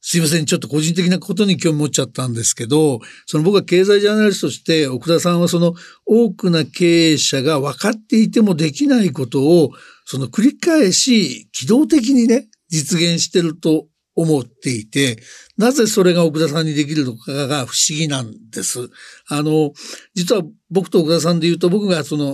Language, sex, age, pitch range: Japanese, male, 60-79, 145-195 Hz